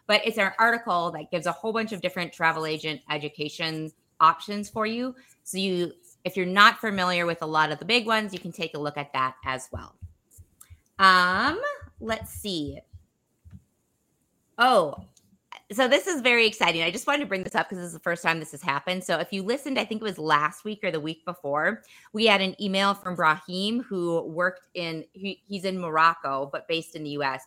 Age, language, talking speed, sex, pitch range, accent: 30-49, English, 210 wpm, female, 155-195 Hz, American